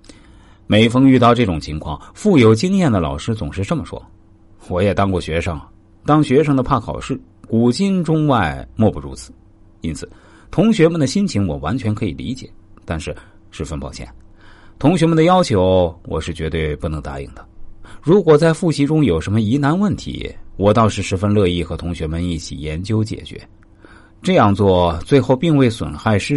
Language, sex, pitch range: Chinese, male, 85-130 Hz